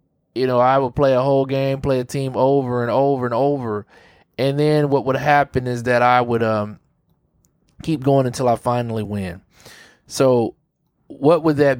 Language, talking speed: English, 185 wpm